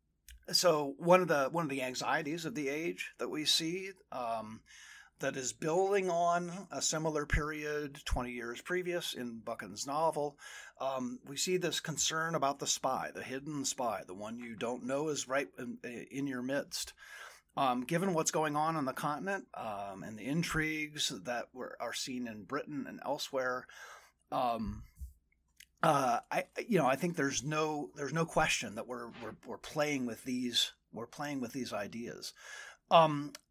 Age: 30-49